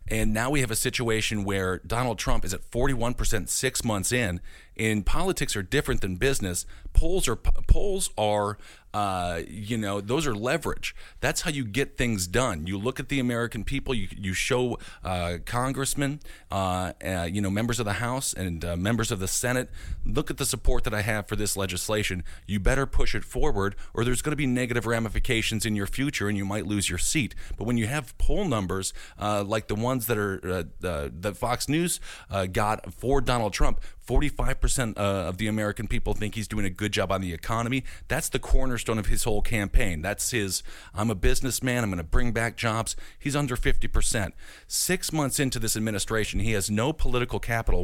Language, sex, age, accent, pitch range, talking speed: English, male, 40-59, American, 95-125 Hz, 200 wpm